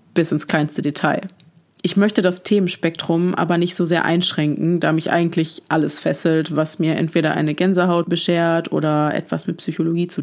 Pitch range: 160-185 Hz